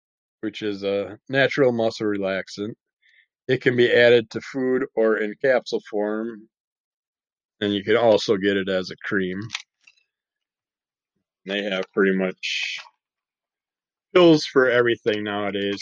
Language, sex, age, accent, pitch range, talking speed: English, male, 20-39, American, 95-120 Hz, 125 wpm